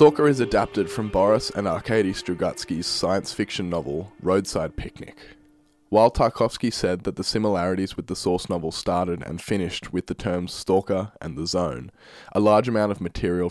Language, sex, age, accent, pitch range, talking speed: English, male, 20-39, Australian, 90-110 Hz, 170 wpm